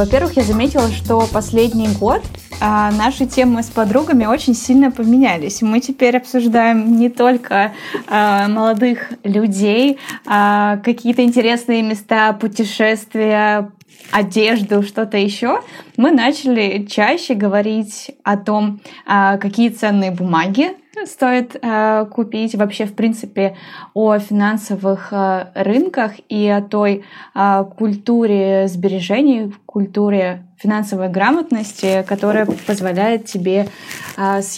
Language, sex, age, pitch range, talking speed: Russian, female, 20-39, 200-235 Hz, 100 wpm